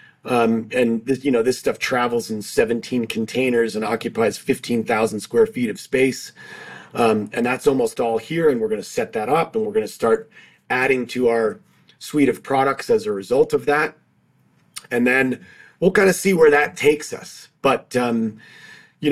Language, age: English, 30-49